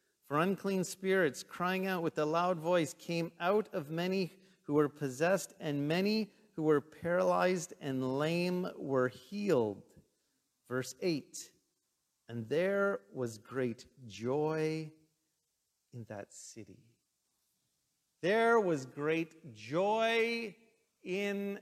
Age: 50-69